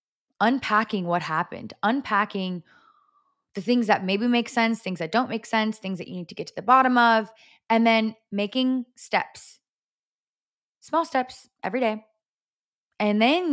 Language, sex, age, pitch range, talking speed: English, female, 20-39, 185-240 Hz, 155 wpm